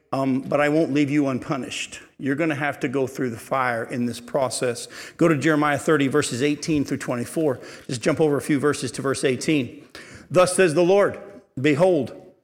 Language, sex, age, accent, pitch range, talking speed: English, male, 50-69, American, 140-175 Hz, 200 wpm